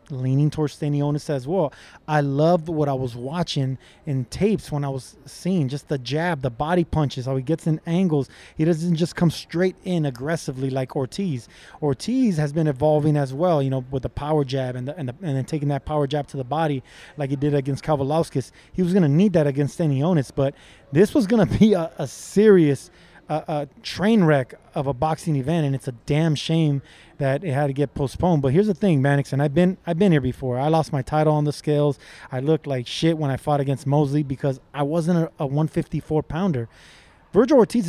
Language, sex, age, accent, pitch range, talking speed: English, male, 20-39, American, 140-175 Hz, 220 wpm